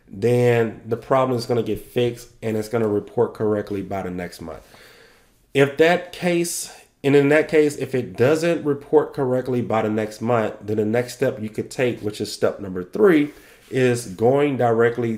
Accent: American